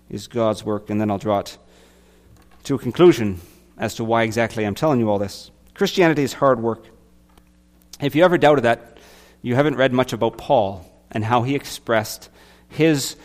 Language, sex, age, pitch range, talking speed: English, male, 40-59, 100-145 Hz, 180 wpm